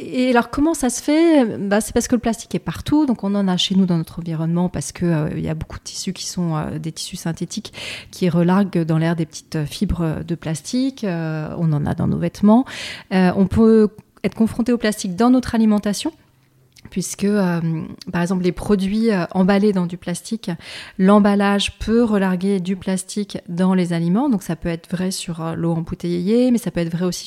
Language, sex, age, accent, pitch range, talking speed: French, female, 30-49, French, 170-220 Hz, 215 wpm